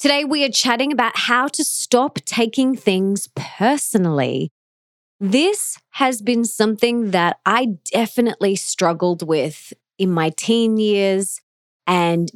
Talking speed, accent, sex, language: 120 wpm, Australian, female, English